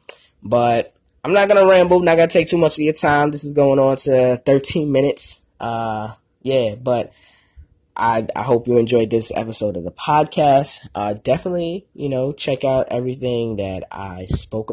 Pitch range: 115-150 Hz